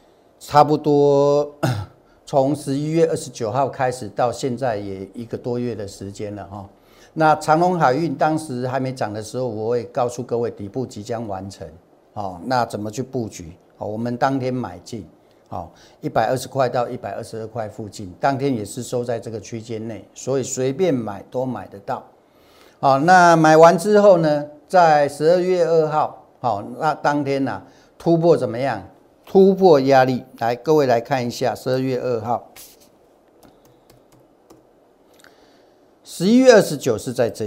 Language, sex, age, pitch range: Chinese, male, 50-69, 110-150 Hz